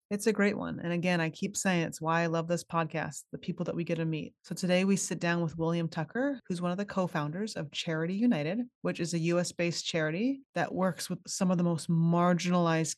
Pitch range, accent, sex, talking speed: 165-195 Hz, American, female, 235 wpm